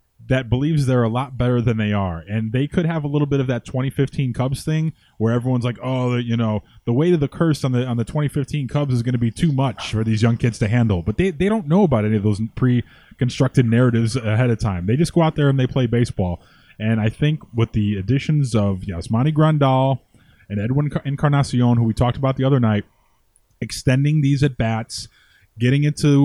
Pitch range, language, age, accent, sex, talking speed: 110-130 Hz, English, 20-39, American, male, 220 wpm